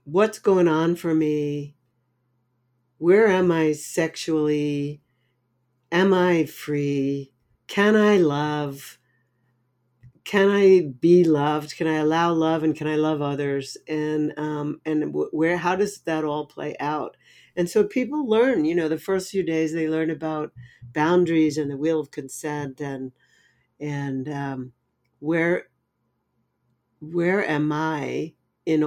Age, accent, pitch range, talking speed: 60-79, American, 140-170 Hz, 135 wpm